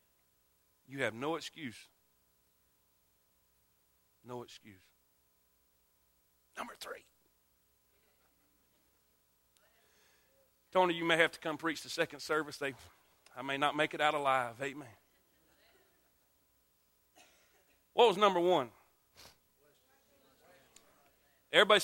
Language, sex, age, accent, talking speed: English, male, 40-59, American, 85 wpm